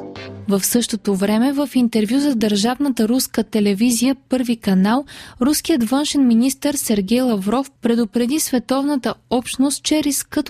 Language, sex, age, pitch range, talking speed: Bulgarian, female, 20-39, 210-260 Hz, 120 wpm